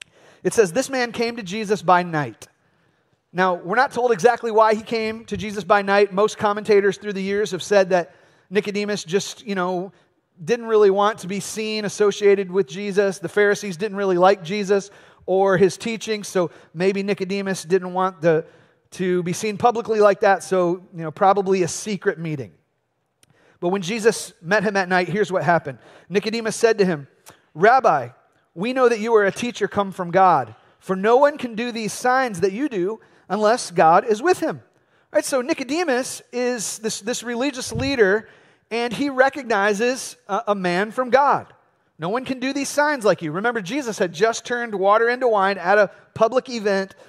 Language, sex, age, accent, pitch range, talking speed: English, male, 40-59, American, 185-235 Hz, 185 wpm